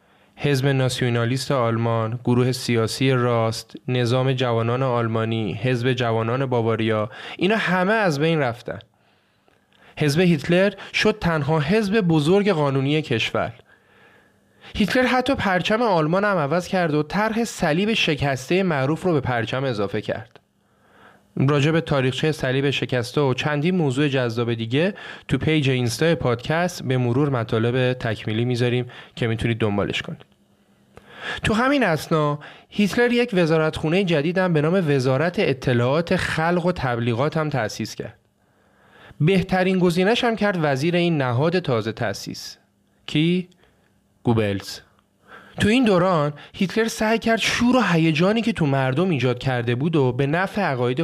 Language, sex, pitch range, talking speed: Persian, male, 125-180 Hz, 130 wpm